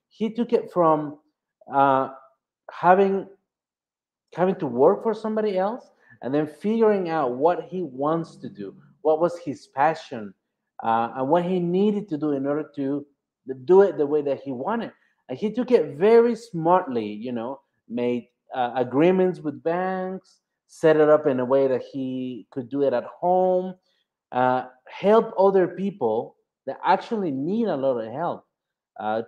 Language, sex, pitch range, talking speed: English, male, 130-185 Hz, 165 wpm